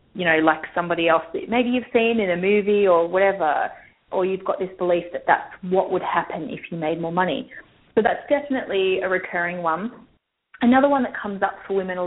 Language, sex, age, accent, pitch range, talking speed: English, female, 20-39, Australian, 180-245 Hz, 215 wpm